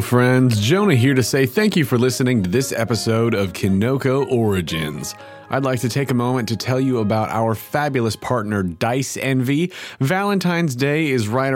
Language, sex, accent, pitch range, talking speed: English, male, American, 110-150 Hz, 175 wpm